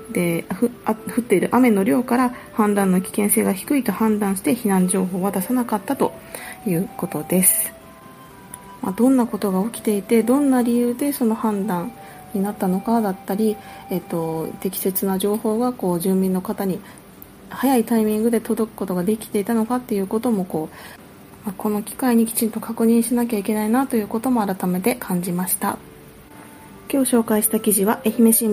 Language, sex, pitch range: Japanese, female, 190-235 Hz